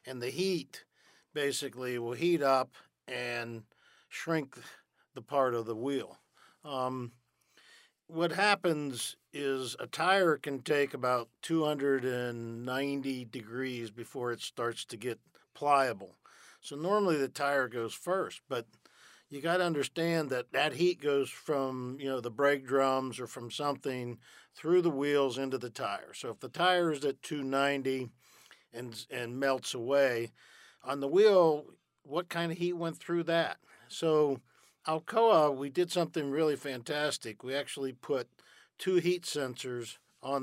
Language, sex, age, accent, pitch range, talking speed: English, male, 50-69, American, 125-155 Hz, 140 wpm